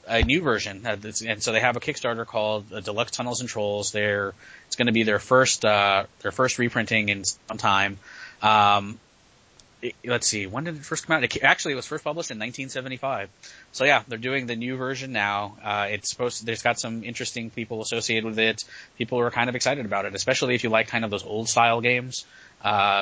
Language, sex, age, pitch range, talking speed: English, male, 20-39, 110-130 Hz, 215 wpm